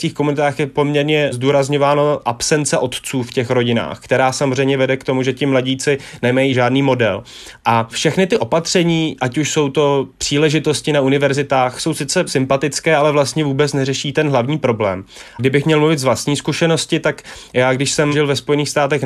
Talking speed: 180 wpm